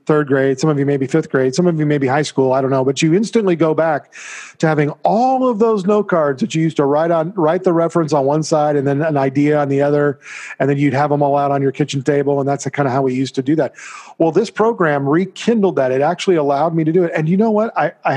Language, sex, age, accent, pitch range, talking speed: English, male, 40-59, American, 140-170 Hz, 295 wpm